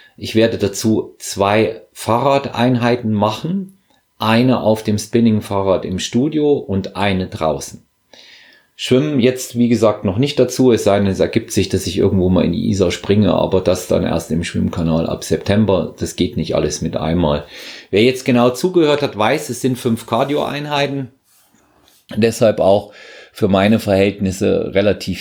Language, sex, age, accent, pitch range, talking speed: German, male, 40-59, German, 90-120 Hz, 155 wpm